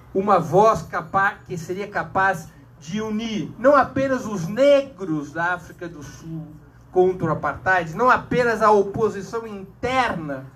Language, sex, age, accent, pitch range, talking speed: Portuguese, male, 50-69, Brazilian, 145-205 Hz, 130 wpm